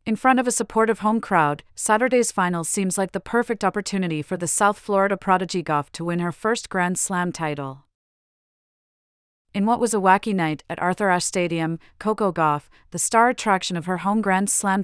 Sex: female